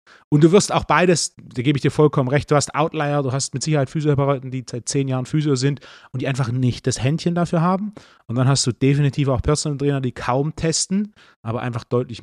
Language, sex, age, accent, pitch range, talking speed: German, male, 30-49, German, 120-150 Hz, 230 wpm